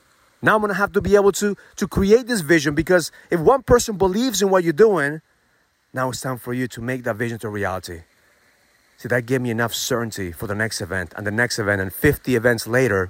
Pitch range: 115-175 Hz